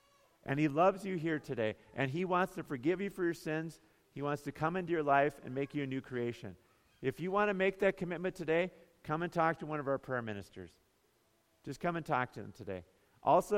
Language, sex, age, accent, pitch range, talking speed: English, male, 50-69, American, 120-170 Hz, 235 wpm